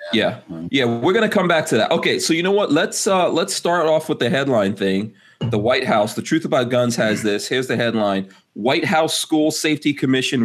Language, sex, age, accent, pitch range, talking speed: English, male, 30-49, American, 110-140 Hz, 230 wpm